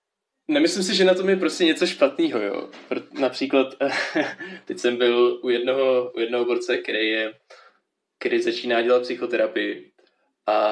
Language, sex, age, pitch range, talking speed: Czech, male, 20-39, 120-140 Hz, 145 wpm